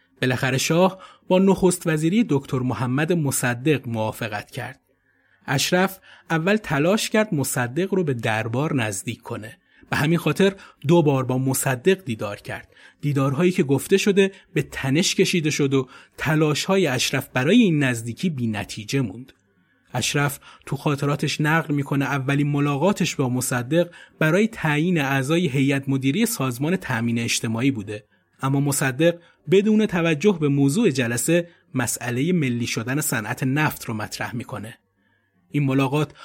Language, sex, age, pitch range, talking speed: Persian, male, 30-49, 130-175 Hz, 130 wpm